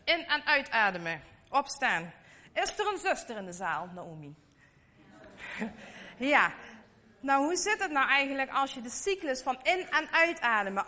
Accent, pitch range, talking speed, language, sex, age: Dutch, 190-290 Hz, 150 wpm, Dutch, female, 30-49